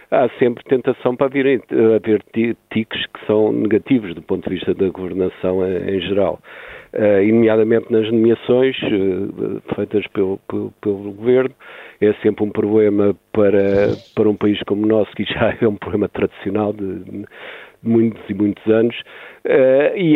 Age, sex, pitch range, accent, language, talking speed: 50-69, male, 105-125 Hz, Portuguese, Portuguese, 145 wpm